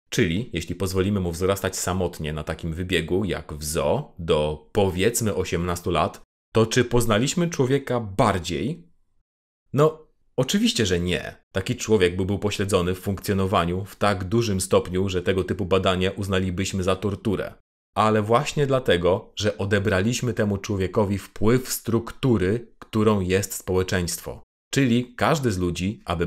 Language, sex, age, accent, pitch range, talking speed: Polish, male, 30-49, native, 90-110 Hz, 135 wpm